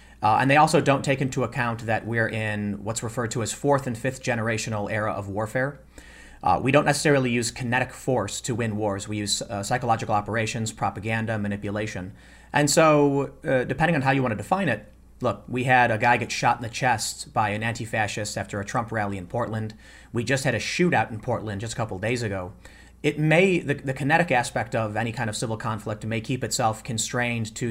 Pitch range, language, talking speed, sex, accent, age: 105-135 Hz, English, 210 wpm, male, American, 30-49